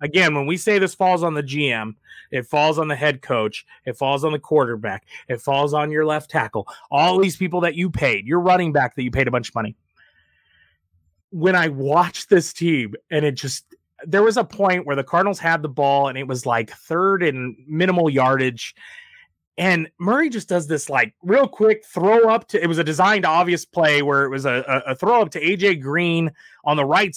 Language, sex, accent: English, male, American